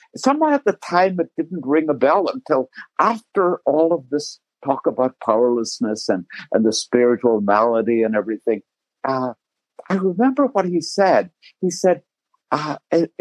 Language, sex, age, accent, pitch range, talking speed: English, male, 60-79, American, 140-205 Hz, 150 wpm